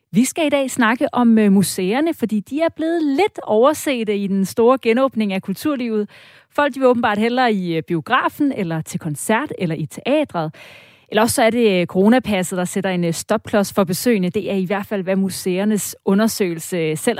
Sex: female